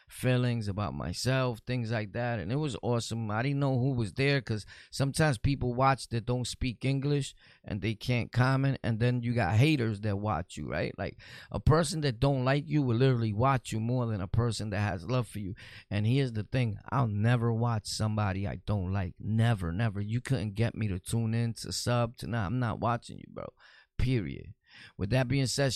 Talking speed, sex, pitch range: 210 wpm, male, 105-135 Hz